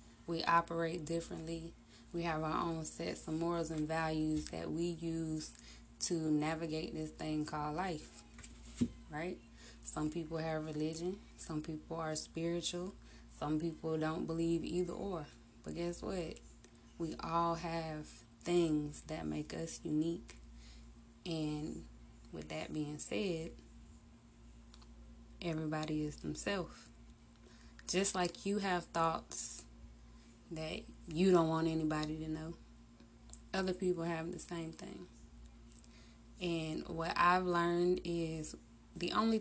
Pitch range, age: 115-170 Hz, 20-39